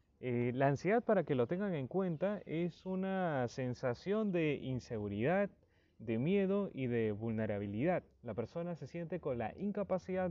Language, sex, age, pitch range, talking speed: Spanish, male, 30-49, 115-165 Hz, 150 wpm